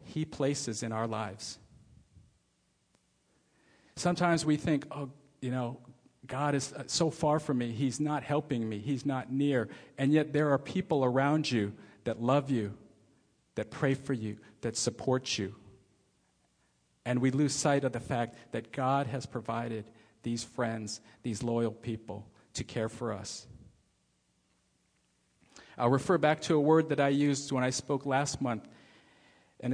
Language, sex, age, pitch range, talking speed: English, male, 50-69, 115-140 Hz, 155 wpm